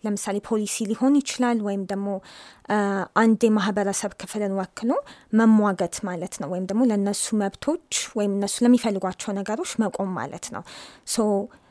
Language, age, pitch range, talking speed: Amharic, 20-39, 195-230 Hz, 130 wpm